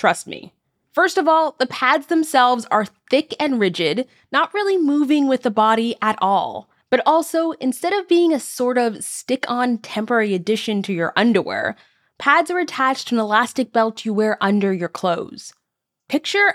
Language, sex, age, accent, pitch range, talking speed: English, female, 20-39, American, 205-285 Hz, 170 wpm